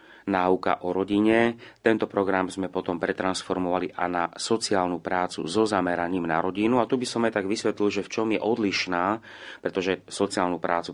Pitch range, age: 90-100 Hz, 30-49